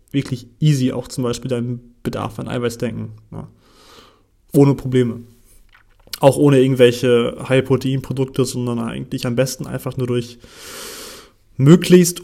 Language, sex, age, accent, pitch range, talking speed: German, male, 30-49, German, 120-135 Hz, 130 wpm